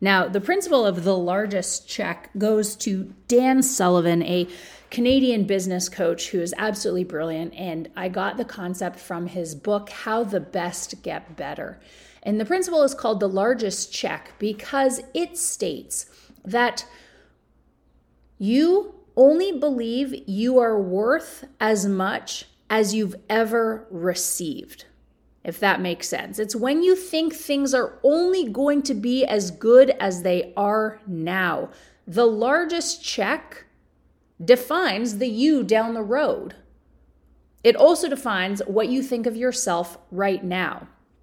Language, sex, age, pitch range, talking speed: English, female, 30-49, 195-265 Hz, 140 wpm